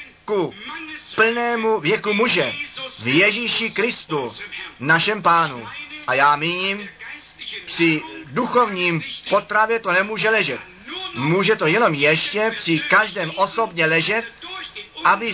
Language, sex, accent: Czech, male, native